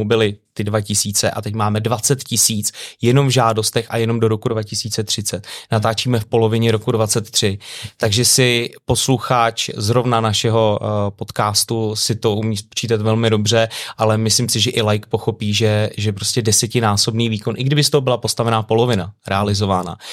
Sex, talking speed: male, 160 wpm